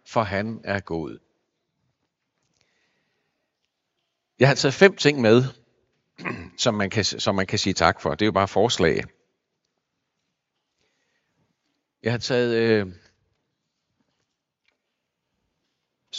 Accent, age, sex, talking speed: native, 60-79, male, 105 wpm